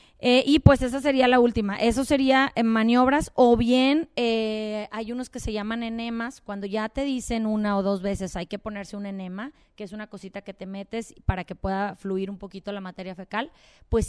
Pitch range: 210-255 Hz